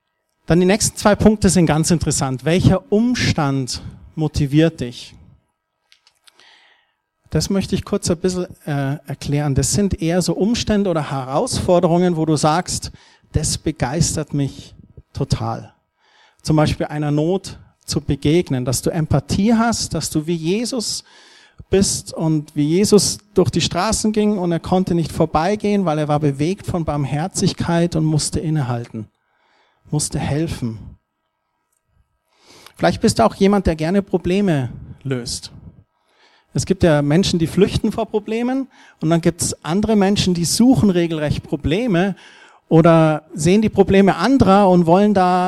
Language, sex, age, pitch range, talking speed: German, male, 40-59, 145-195 Hz, 140 wpm